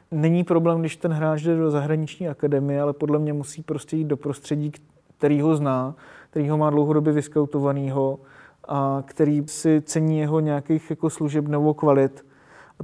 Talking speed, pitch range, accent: 170 wpm, 145-160 Hz, native